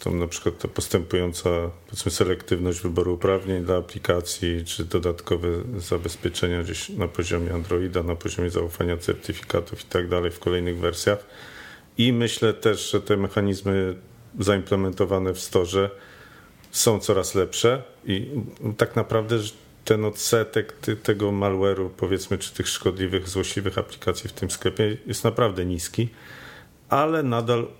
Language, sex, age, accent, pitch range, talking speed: Polish, male, 40-59, native, 90-105 Hz, 130 wpm